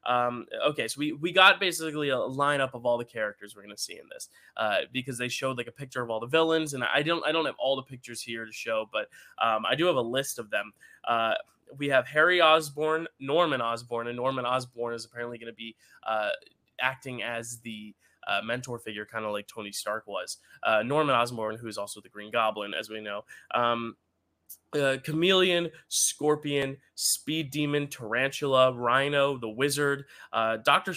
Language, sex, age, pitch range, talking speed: English, male, 20-39, 115-145 Hz, 200 wpm